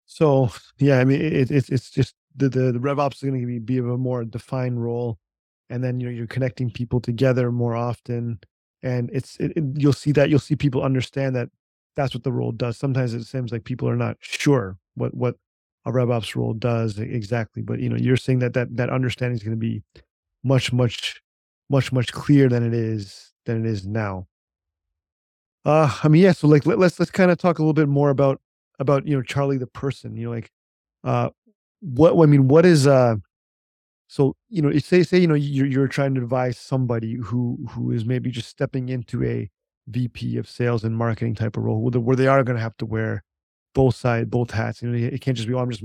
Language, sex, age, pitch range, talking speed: English, male, 30-49, 115-135 Hz, 230 wpm